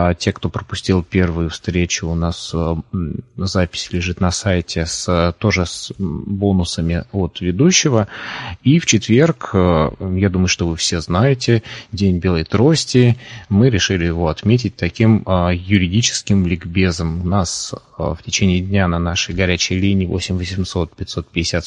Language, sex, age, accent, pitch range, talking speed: Russian, male, 20-39, native, 90-110 Hz, 135 wpm